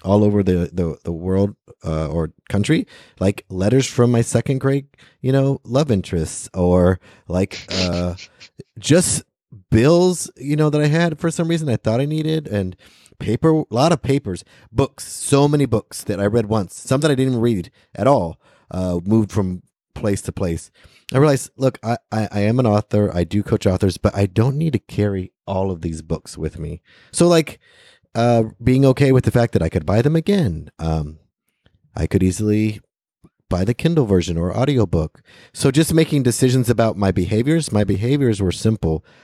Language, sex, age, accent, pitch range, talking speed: English, male, 30-49, American, 90-130 Hz, 190 wpm